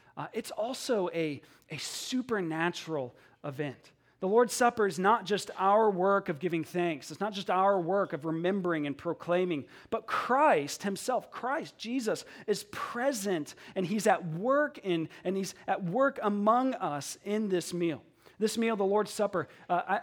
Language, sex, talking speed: English, male, 160 wpm